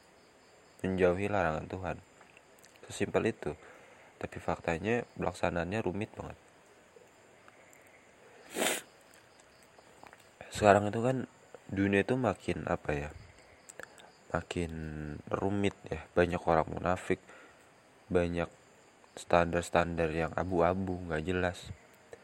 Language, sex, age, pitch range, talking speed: Indonesian, male, 20-39, 85-105 Hz, 80 wpm